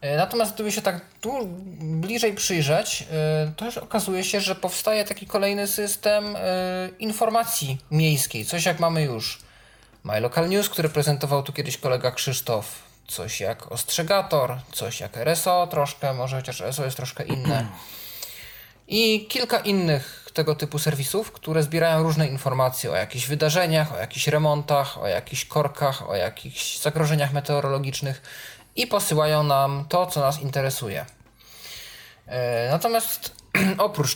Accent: native